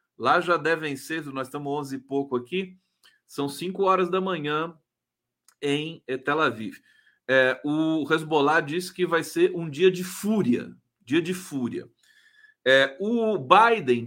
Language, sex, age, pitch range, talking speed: Portuguese, male, 40-59, 140-210 Hz, 150 wpm